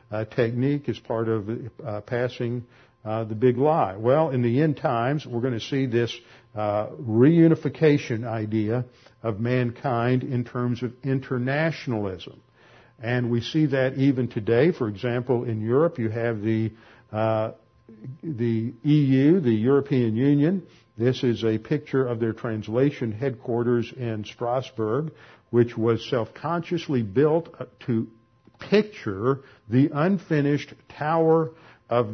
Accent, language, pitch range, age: American, English, 115-135 Hz, 60-79